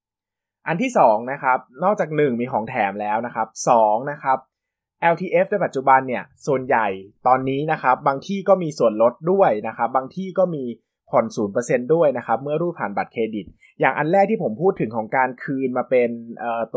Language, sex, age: Thai, male, 20-39